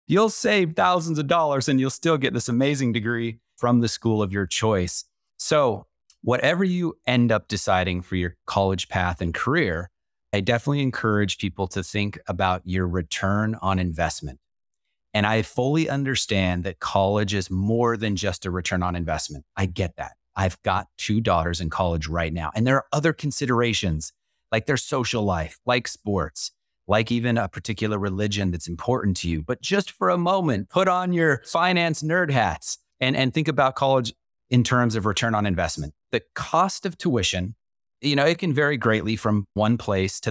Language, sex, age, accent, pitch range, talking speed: English, male, 30-49, American, 95-135 Hz, 180 wpm